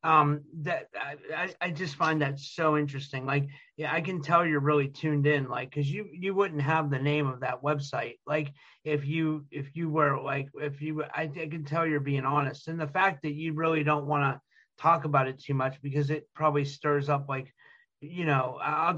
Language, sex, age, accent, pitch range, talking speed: English, male, 30-49, American, 140-155 Hz, 215 wpm